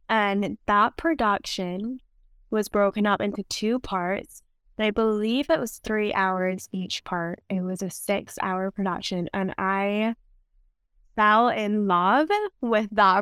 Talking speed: 135 wpm